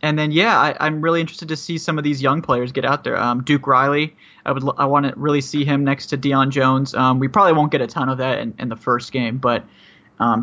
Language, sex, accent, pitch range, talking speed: English, male, American, 130-150 Hz, 275 wpm